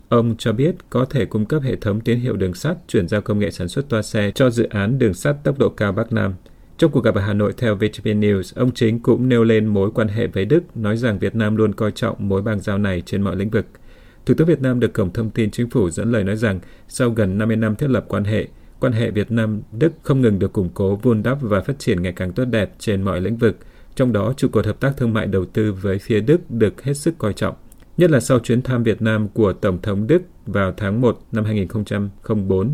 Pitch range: 100-120 Hz